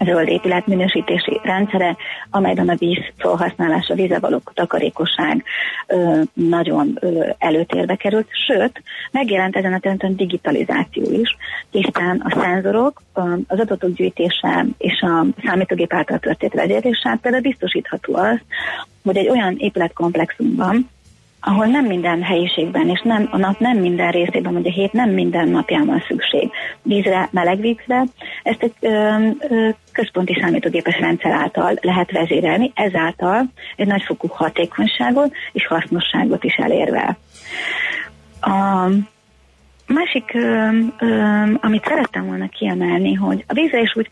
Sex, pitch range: female, 175-230 Hz